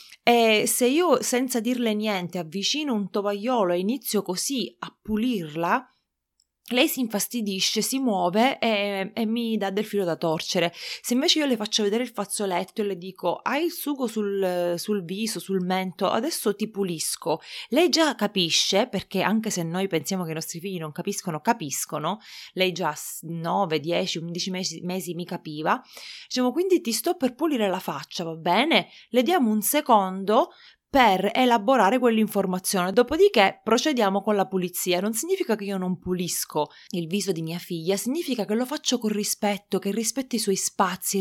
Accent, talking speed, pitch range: native, 170 wpm, 185-245 Hz